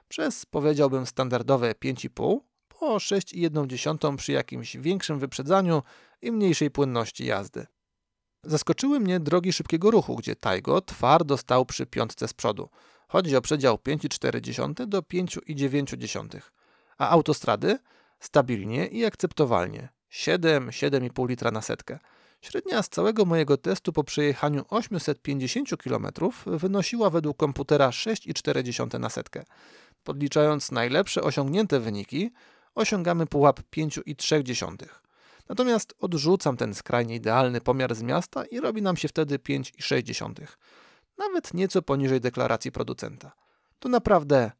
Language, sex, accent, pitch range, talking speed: Polish, male, native, 135-185 Hz, 115 wpm